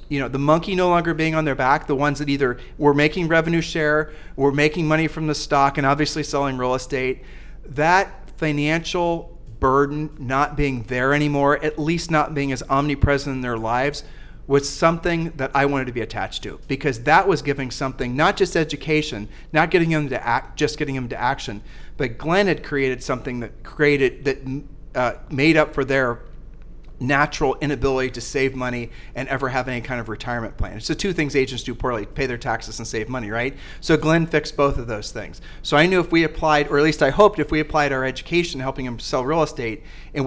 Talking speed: 210 wpm